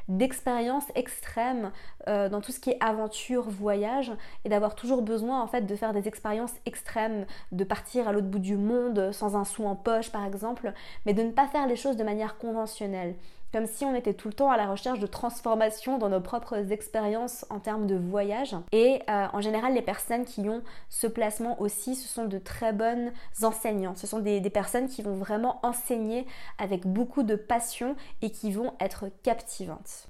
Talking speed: 195 wpm